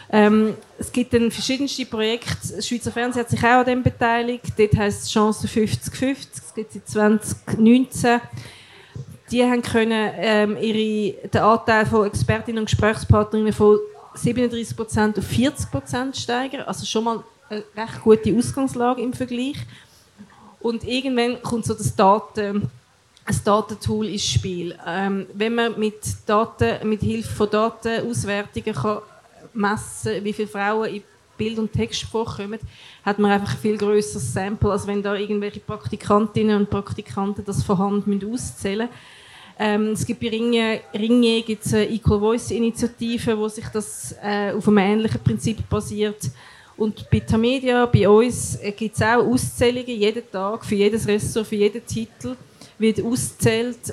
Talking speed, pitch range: 145 wpm, 205-230 Hz